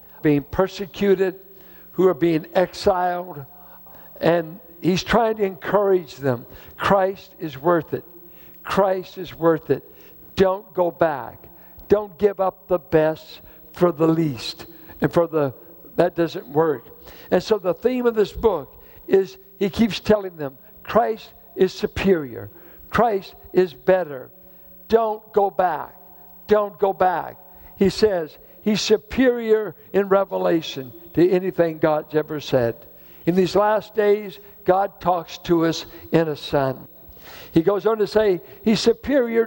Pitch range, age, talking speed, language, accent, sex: 165-210 Hz, 60-79, 135 wpm, English, American, male